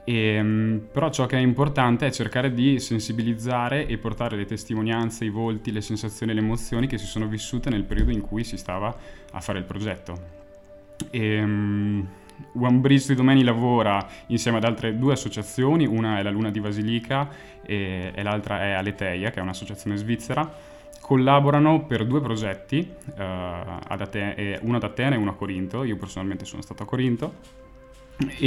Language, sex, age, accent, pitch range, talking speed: Italian, male, 20-39, native, 100-125 Hz, 160 wpm